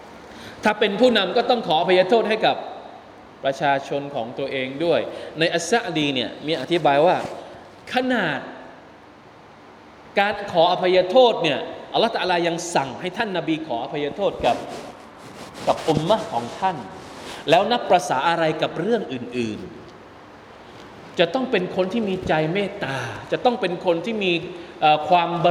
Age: 20-39